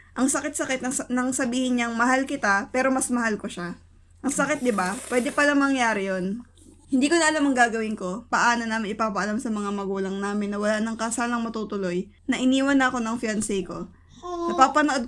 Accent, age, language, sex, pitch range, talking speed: native, 20-39, Filipino, female, 210-265 Hz, 185 wpm